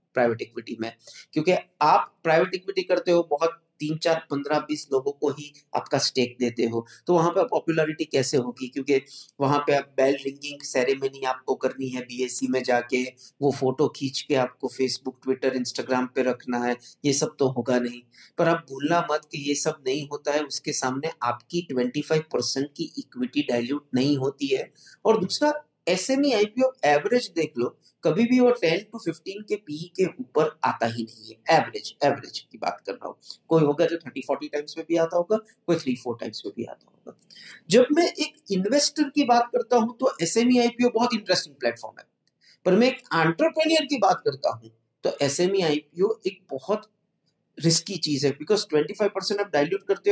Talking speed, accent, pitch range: 180 wpm, native, 135-215 Hz